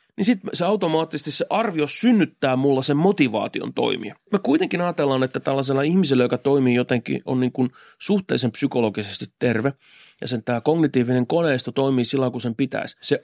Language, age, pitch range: Finnish, 30-49, 125-165 Hz